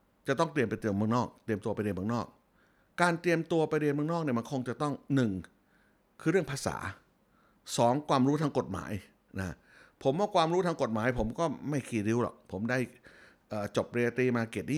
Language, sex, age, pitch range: Thai, male, 60-79, 115-150 Hz